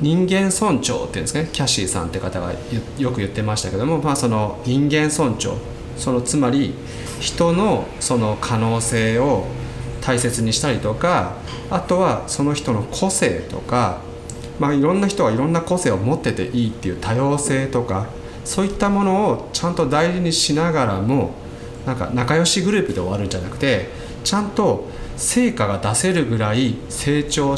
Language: Japanese